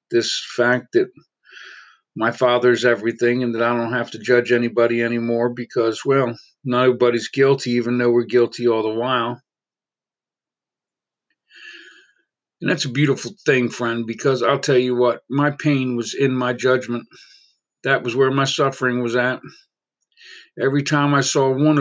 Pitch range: 120-145 Hz